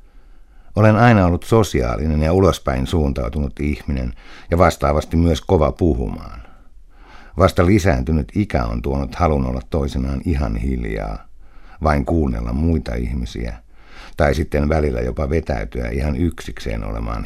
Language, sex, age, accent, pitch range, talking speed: Finnish, male, 60-79, native, 65-80 Hz, 120 wpm